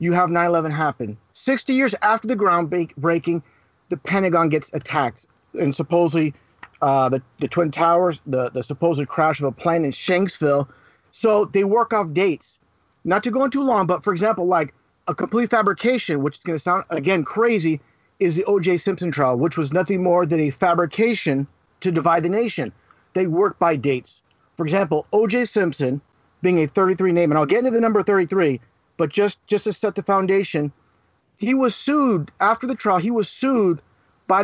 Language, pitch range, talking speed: English, 165-220 Hz, 185 wpm